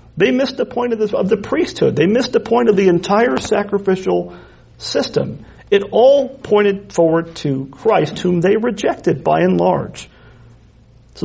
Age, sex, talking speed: 40-59, male, 160 wpm